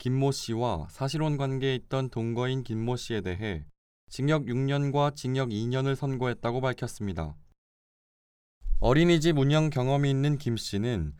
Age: 20-39